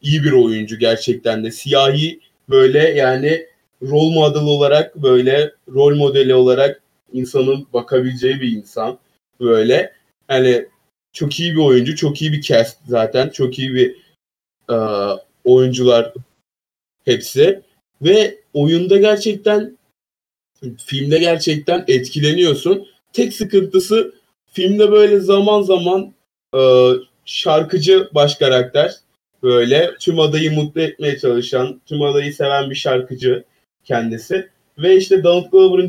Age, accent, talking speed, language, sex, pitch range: 30-49, native, 115 wpm, Turkish, male, 125-185 Hz